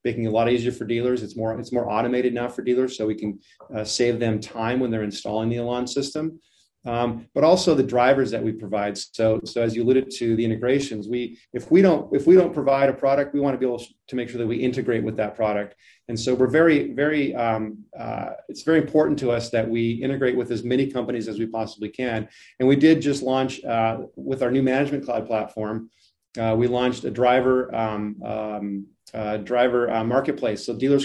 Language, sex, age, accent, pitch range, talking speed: English, male, 30-49, American, 110-130 Hz, 225 wpm